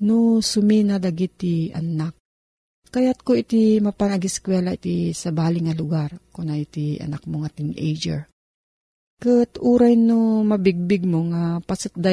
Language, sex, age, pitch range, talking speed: Filipino, female, 40-59, 170-220 Hz, 130 wpm